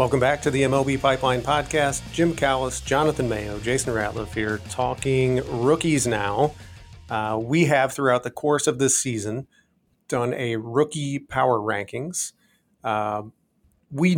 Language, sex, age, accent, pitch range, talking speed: English, male, 40-59, American, 115-140 Hz, 140 wpm